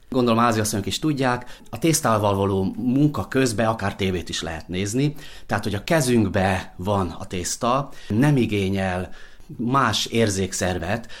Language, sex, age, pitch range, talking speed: Hungarian, male, 30-49, 90-125 Hz, 135 wpm